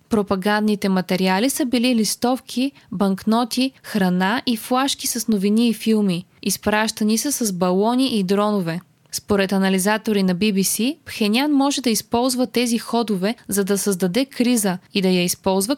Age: 20-39